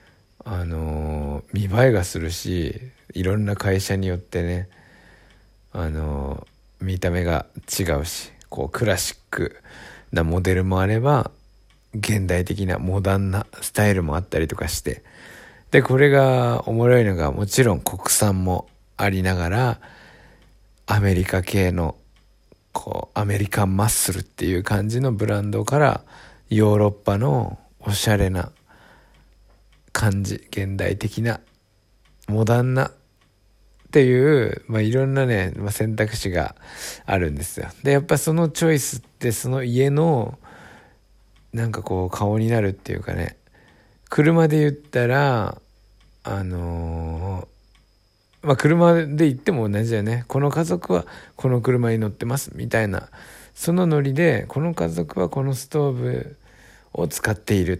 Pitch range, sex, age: 90-125 Hz, male, 60-79